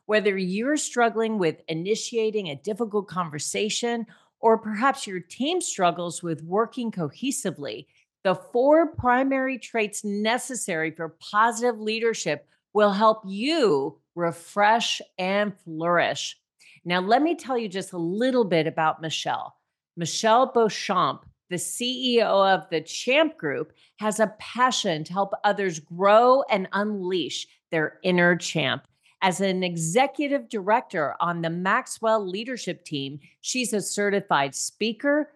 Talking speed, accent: 125 wpm, American